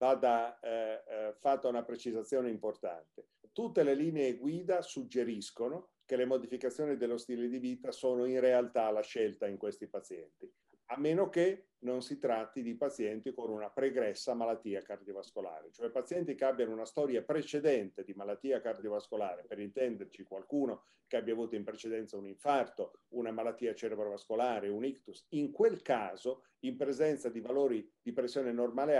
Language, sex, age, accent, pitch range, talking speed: Italian, male, 40-59, native, 115-150 Hz, 155 wpm